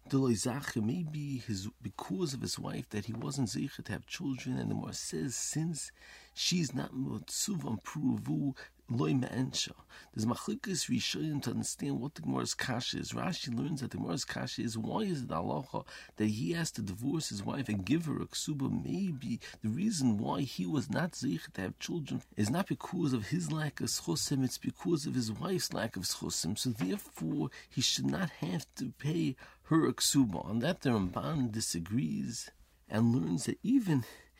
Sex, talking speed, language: male, 180 wpm, English